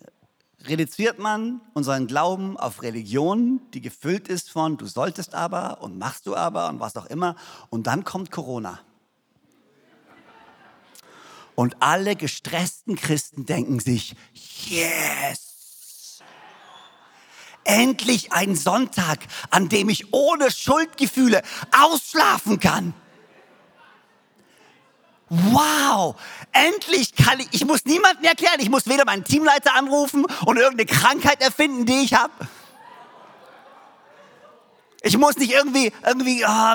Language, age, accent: German, 50-69, German